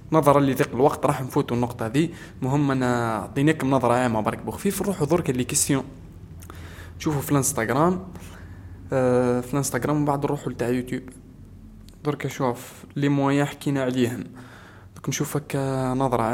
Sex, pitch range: male, 120-155 Hz